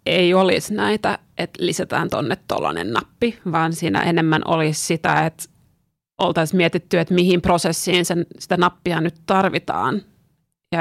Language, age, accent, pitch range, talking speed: Finnish, 30-49, native, 165-185 Hz, 135 wpm